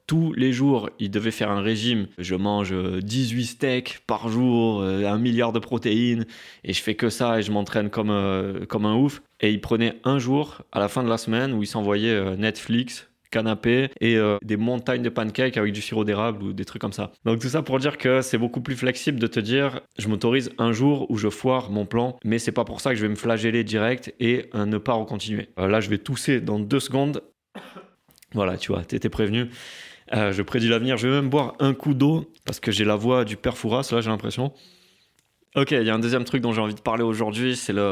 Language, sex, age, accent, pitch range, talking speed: French, male, 20-39, French, 105-125 Hz, 235 wpm